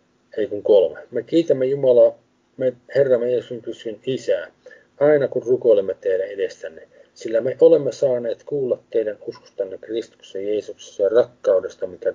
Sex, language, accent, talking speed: male, Finnish, native, 135 wpm